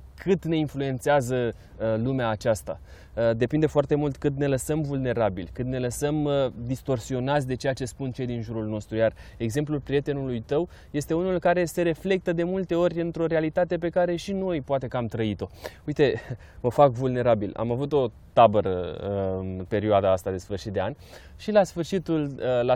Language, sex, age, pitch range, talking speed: Romanian, male, 20-39, 120-165 Hz, 170 wpm